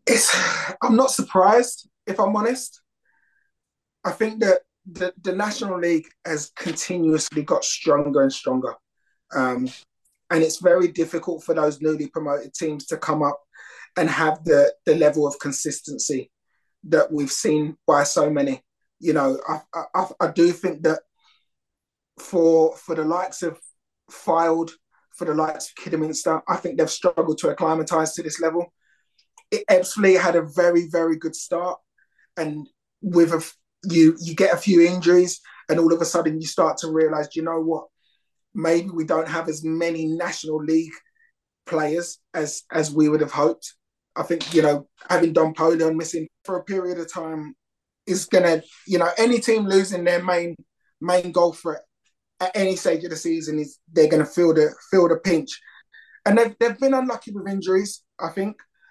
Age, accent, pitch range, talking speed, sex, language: 20-39, British, 160-185 Hz, 170 wpm, male, English